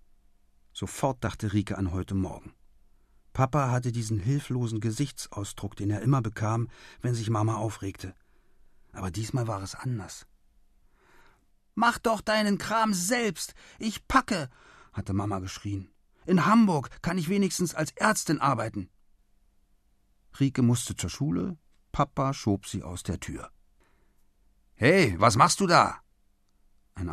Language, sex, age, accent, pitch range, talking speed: German, male, 40-59, German, 100-135 Hz, 130 wpm